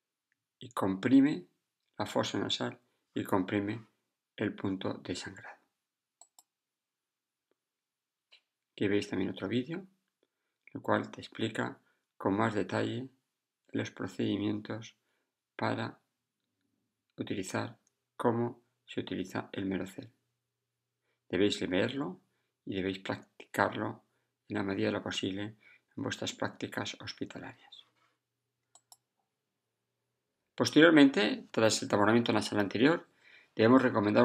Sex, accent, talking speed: male, Spanish, 100 wpm